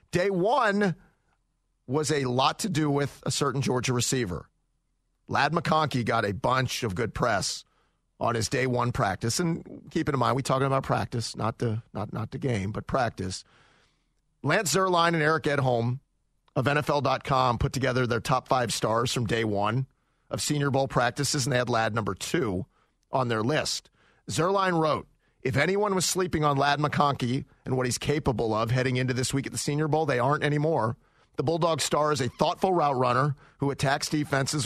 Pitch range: 120-150 Hz